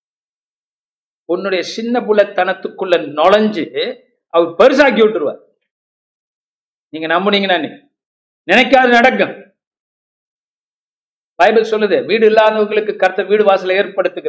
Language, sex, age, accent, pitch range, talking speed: Tamil, male, 50-69, native, 150-210 Hz, 65 wpm